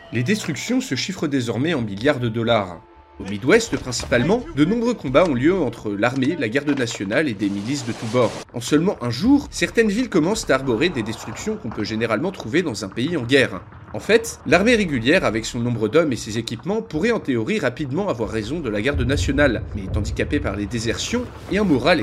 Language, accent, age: French, French, 30-49